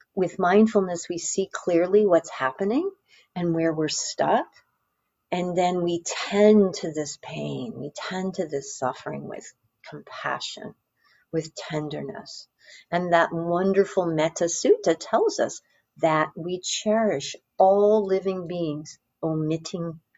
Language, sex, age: English, female, 50-69